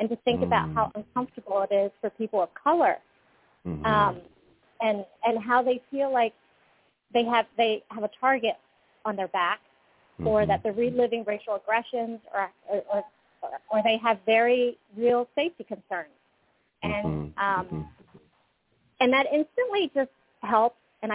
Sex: female